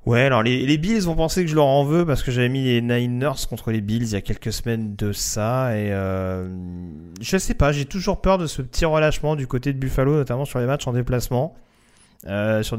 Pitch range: 115-140 Hz